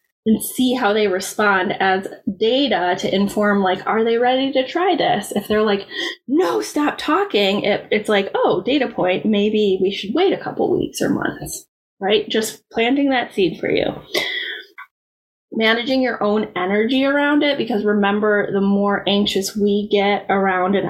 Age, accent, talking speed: 10-29, American, 165 wpm